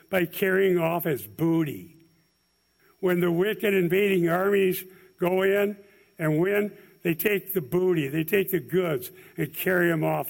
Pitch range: 165-200 Hz